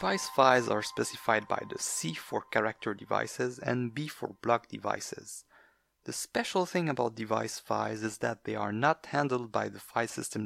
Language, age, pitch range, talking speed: English, 30-49, 110-130 Hz, 180 wpm